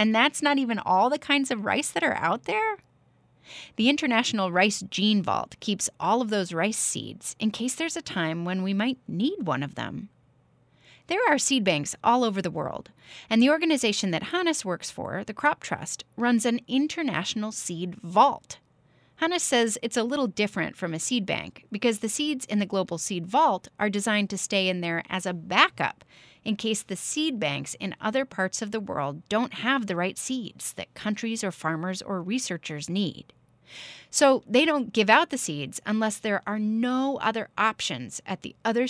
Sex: female